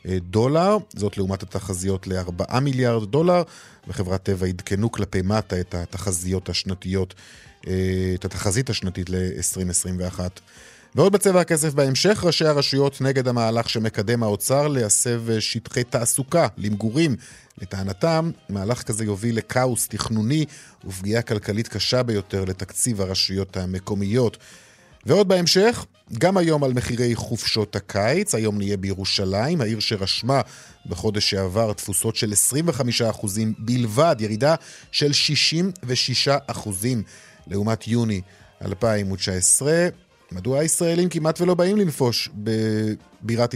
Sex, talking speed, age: male, 105 wpm, 50-69